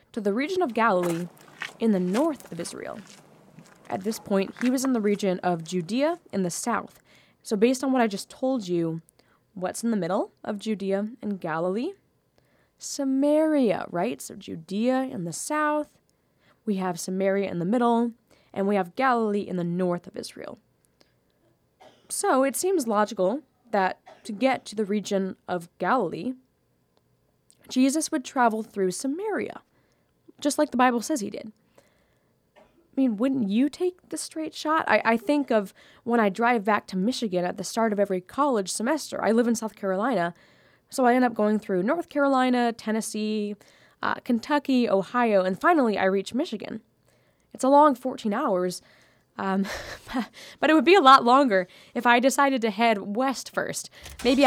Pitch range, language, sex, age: 195-265 Hz, English, female, 20-39